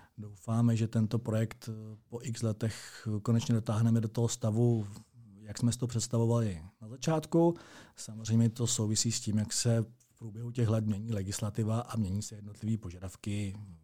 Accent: native